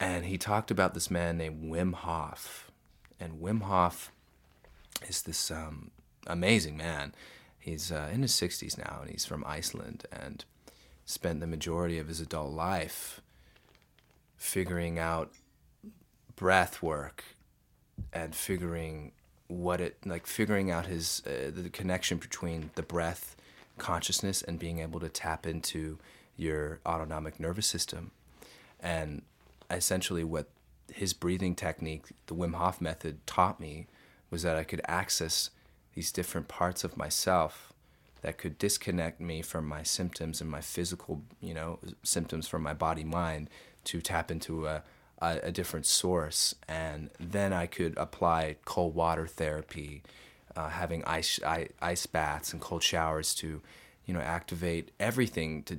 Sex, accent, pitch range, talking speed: male, American, 80-90 Hz, 145 wpm